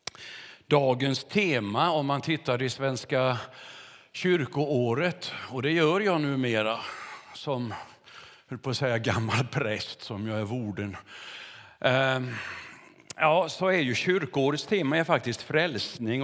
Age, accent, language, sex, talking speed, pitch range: 50-69, native, Swedish, male, 115 wpm, 120-160 Hz